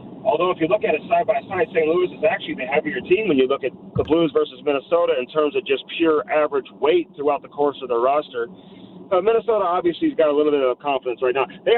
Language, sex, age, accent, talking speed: English, male, 40-59, American, 250 wpm